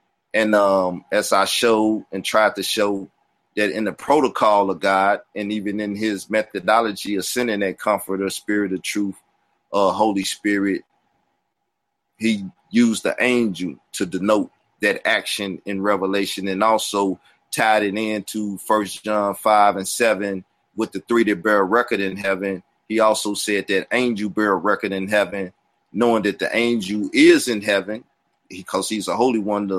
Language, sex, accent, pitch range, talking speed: English, male, American, 100-110 Hz, 160 wpm